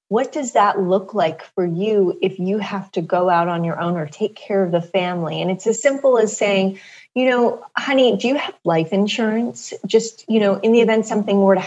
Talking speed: 230 wpm